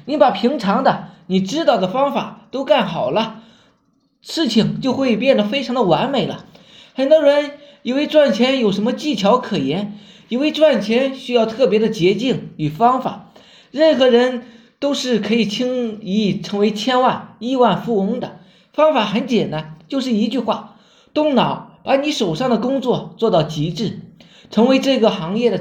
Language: Chinese